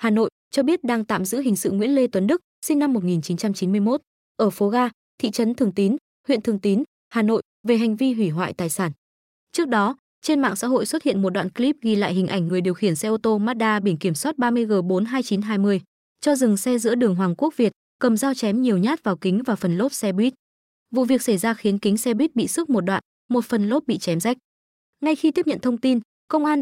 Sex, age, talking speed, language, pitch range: female, 20-39, 240 wpm, Vietnamese, 200-255 Hz